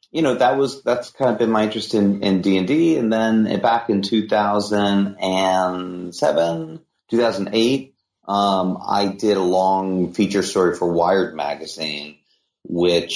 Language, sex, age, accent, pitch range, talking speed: English, male, 30-49, American, 80-110 Hz, 170 wpm